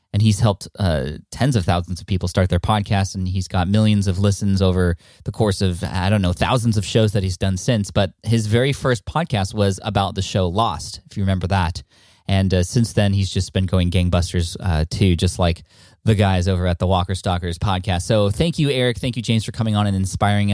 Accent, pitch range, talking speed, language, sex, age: American, 100-120 Hz, 230 wpm, English, male, 20-39